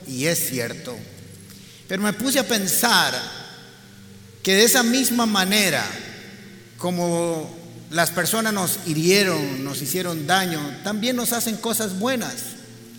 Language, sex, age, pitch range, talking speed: Spanish, male, 50-69, 175-220 Hz, 120 wpm